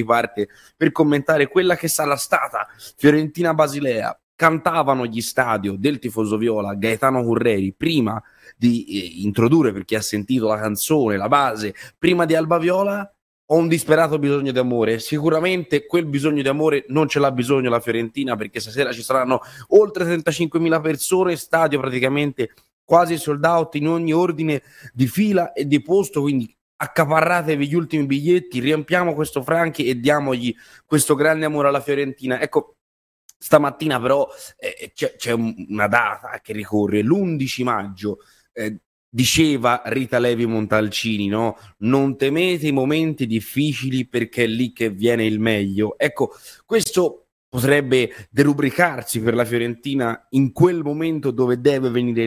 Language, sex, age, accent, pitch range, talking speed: Italian, male, 20-39, native, 115-155 Hz, 145 wpm